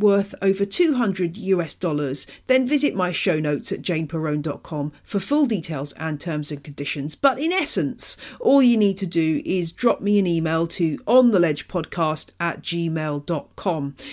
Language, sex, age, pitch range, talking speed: English, female, 40-59, 160-210 Hz, 155 wpm